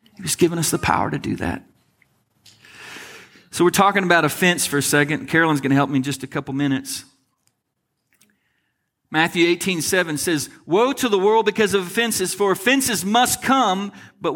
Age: 40-59